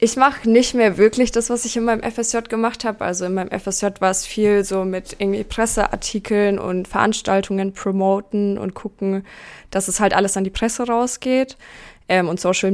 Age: 20-39